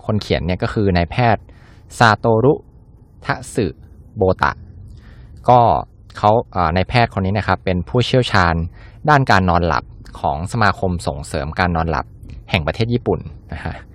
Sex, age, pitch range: male, 20-39, 85-115 Hz